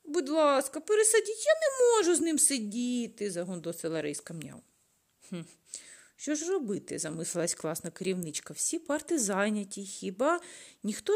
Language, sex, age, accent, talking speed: Ukrainian, female, 30-49, native, 130 wpm